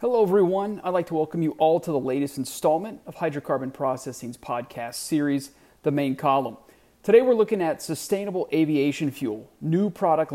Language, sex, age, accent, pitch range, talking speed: English, male, 40-59, American, 140-180 Hz, 170 wpm